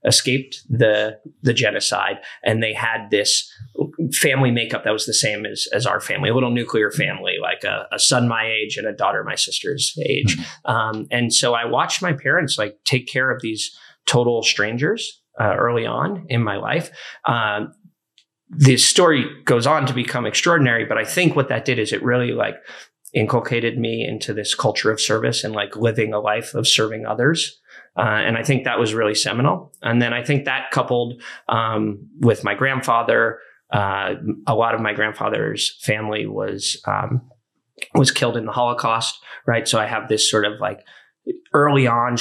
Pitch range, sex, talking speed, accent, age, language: 110-130 Hz, male, 185 wpm, American, 20-39, English